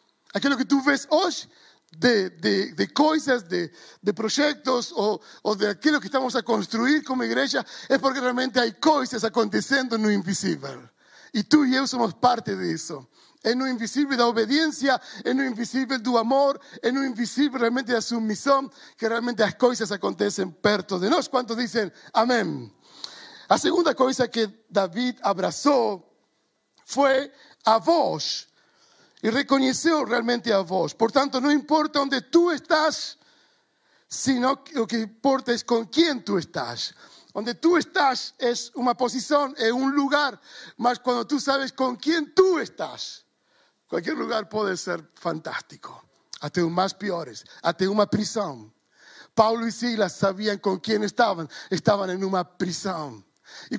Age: 50-69